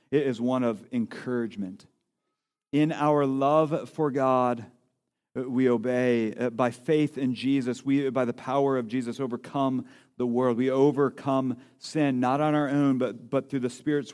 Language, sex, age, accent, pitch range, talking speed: English, male, 40-59, American, 120-145 Hz, 155 wpm